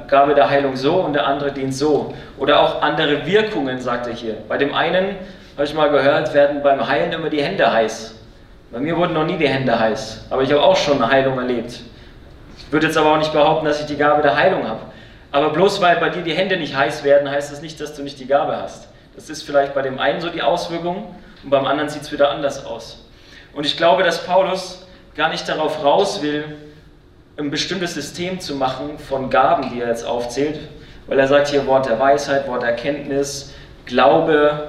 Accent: German